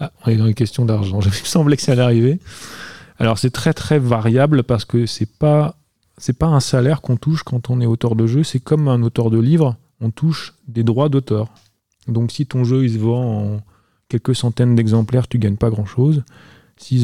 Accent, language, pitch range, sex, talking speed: French, French, 110-125 Hz, male, 220 wpm